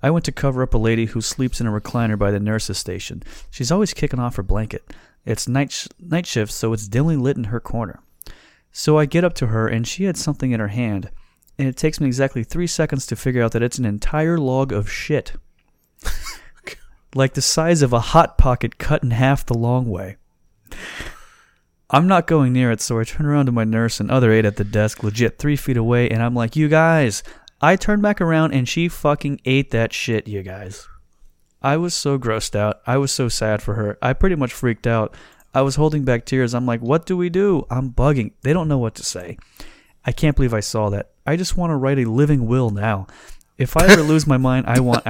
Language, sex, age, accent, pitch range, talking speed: English, male, 30-49, American, 115-150 Hz, 230 wpm